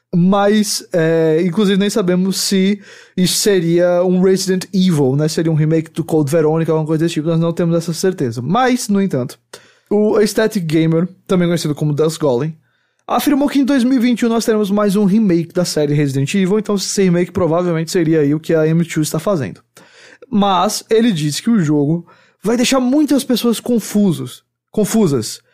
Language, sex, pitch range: English, male, 165-215 Hz